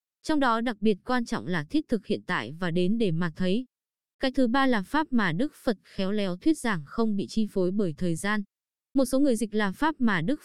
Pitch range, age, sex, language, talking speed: 195-255 Hz, 20-39, female, Vietnamese, 245 wpm